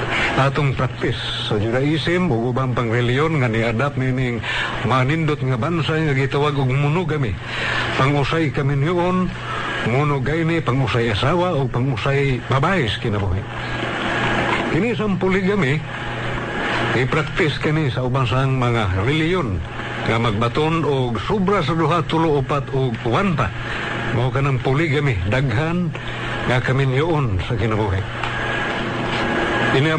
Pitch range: 115-155 Hz